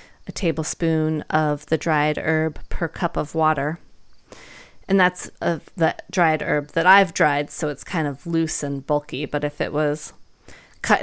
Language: English